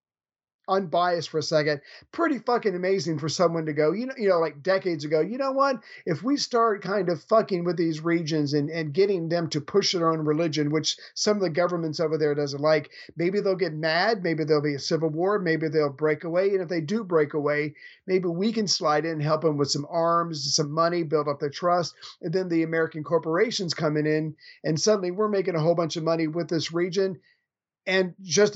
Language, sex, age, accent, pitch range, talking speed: English, male, 50-69, American, 155-190 Hz, 220 wpm